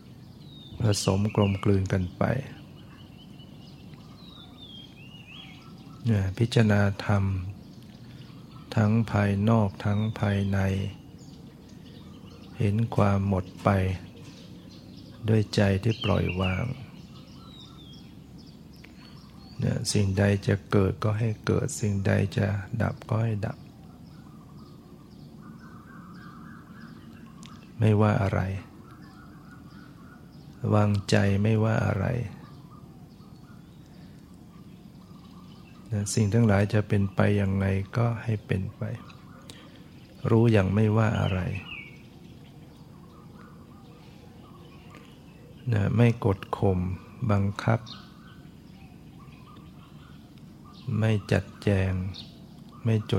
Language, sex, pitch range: Thai, male, 100-110 Hz